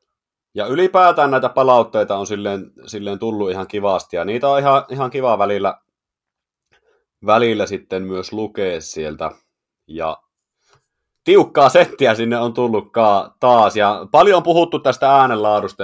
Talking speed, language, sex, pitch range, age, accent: 135 wpm, Finnish, male, 95-130 Hz, 30-49, native